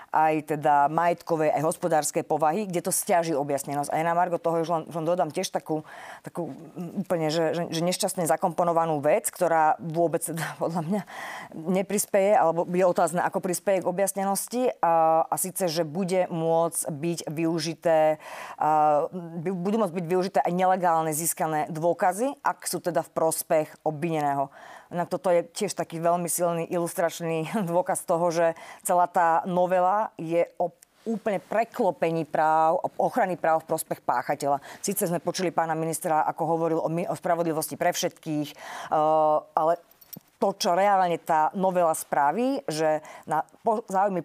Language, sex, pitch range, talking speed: Slovak, female, 160-185 Hz, 150 wpm